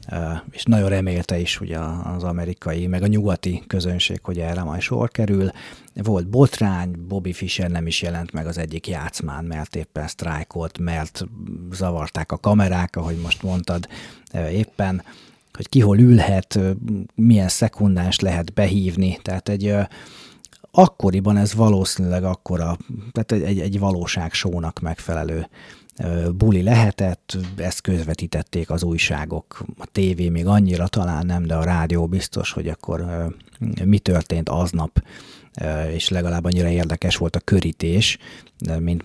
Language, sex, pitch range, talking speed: Hungarian, male, 85-105 Hz, 135 wpm